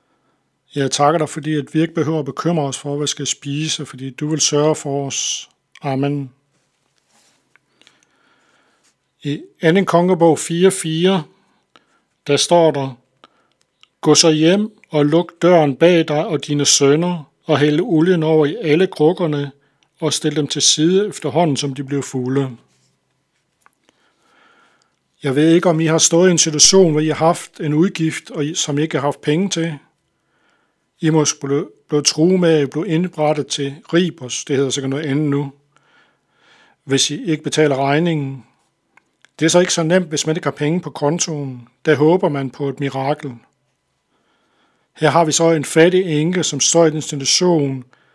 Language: Danish